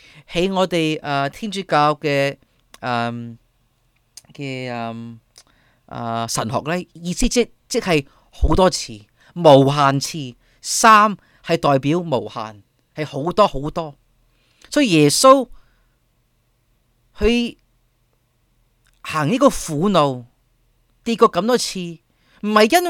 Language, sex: Chinese, male